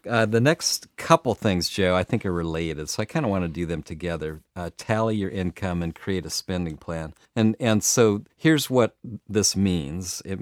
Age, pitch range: 50-69, 95-120 Hz